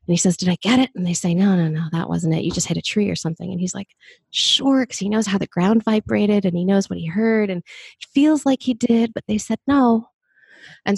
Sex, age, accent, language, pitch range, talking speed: female, 20-39, American, English, 170-205 Hz, 280 wpm